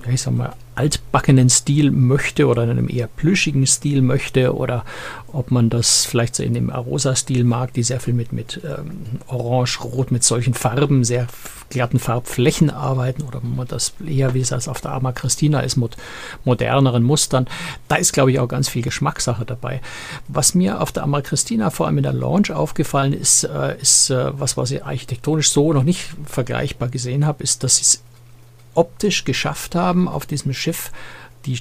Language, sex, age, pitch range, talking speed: German, male, 60-79, 120-145 Hz, 190 wpm